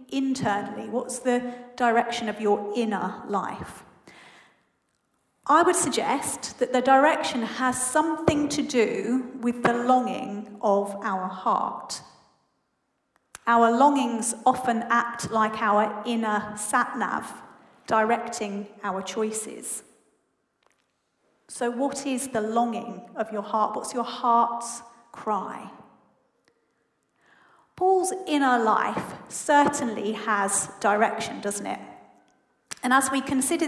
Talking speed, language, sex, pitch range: 105 wpm, English, female, 220-270 Hz